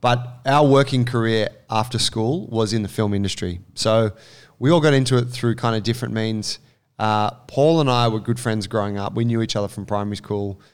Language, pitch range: English, 105-125 Hz